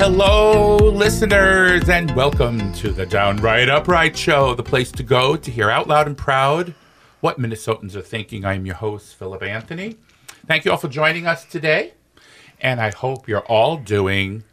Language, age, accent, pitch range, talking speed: English, 50-69, American, 105-165 Hz, 170 wpm